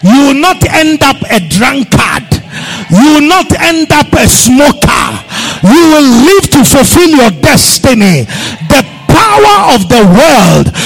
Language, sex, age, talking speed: English, male, 50-69, 145 wpm